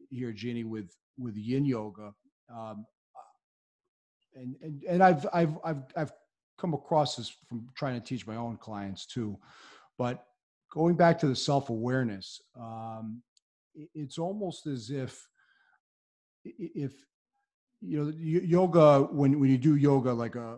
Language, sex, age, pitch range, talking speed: English, male, 40-59, 110-140 Hz, 140 wpm